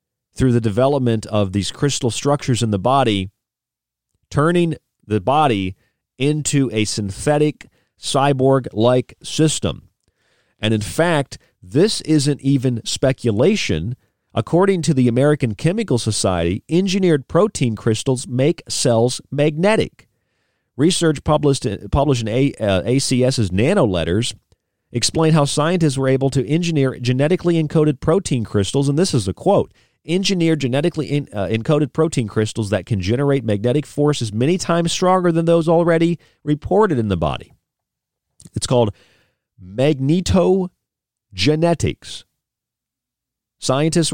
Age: 40-59